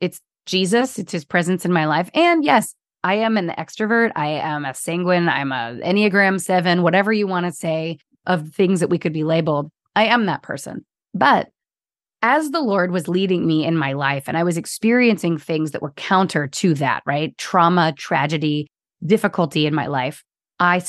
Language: English